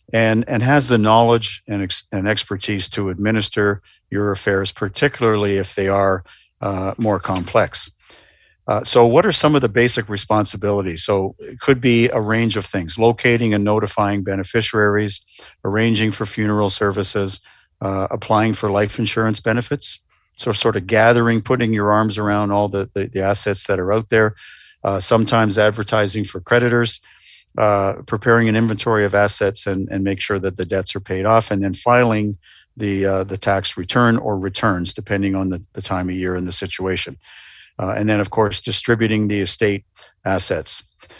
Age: 50-69